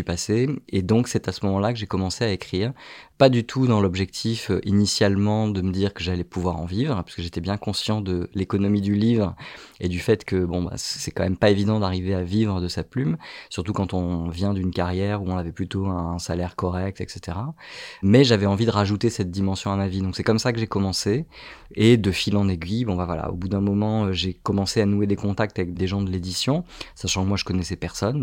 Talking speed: 240 wpm